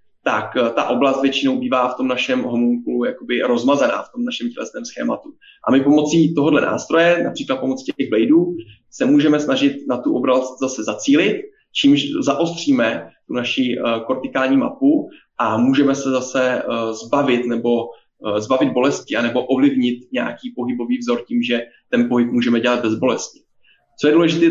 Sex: male